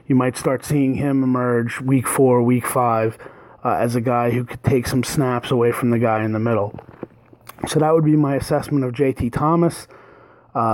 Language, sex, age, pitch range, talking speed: English, male, 30-49, 125-155 Hz, 200 wpm